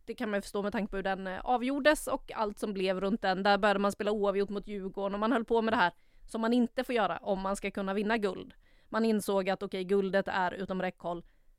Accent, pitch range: Swedish, 195-230 Hz